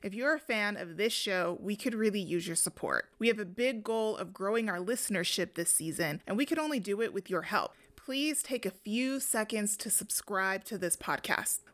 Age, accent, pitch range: 30-49, American, 190-235 Hz